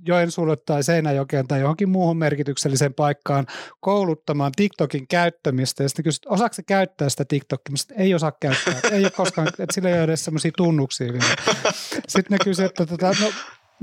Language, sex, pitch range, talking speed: Finnish, male, 145-195 Hz, 170 wpm